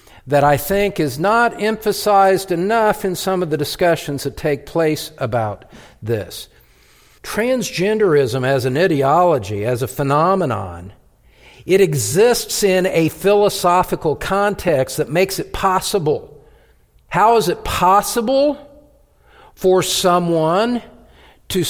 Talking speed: 115 wpm